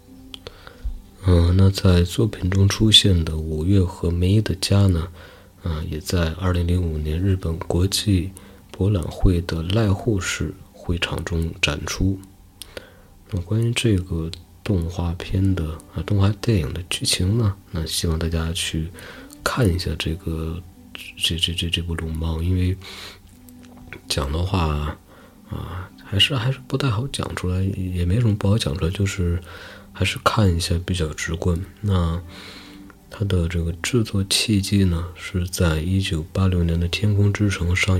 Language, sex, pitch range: Chinese, male, 85-100 Hz